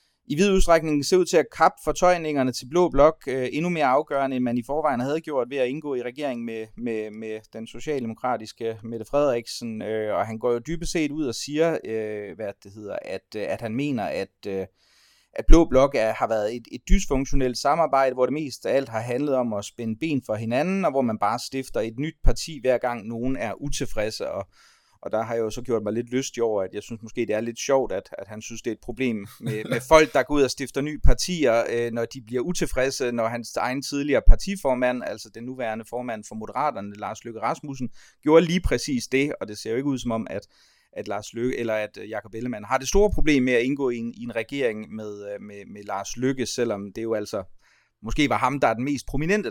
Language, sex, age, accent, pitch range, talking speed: Danish, male, 30-49, native, 110-140 Hz, 235 wpm